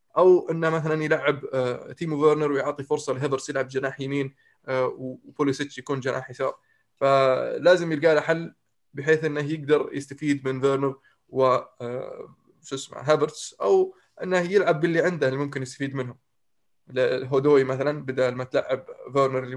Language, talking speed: Arabic, 140 wpm